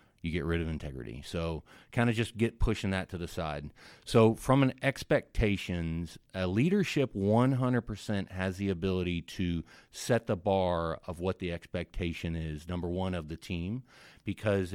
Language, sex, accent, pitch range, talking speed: English, male, American, 85-105 Hz, 165 wpm